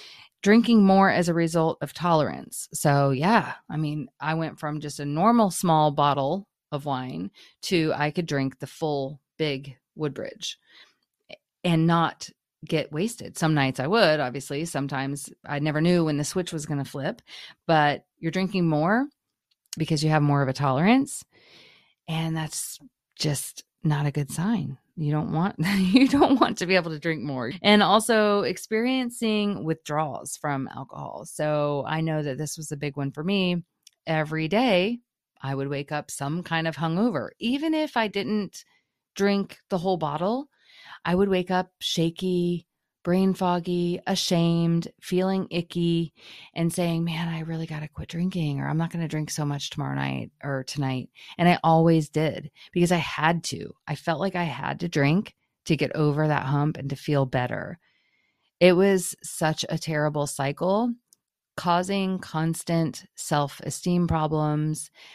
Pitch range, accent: 150-180 Hz, American